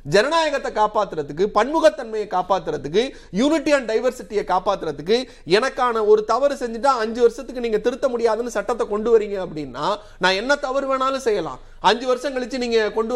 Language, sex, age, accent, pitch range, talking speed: Tamil, male, 30-49, native, 195-275 Hz, 140 wpm